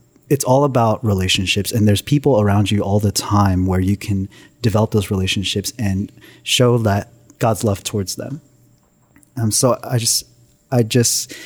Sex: male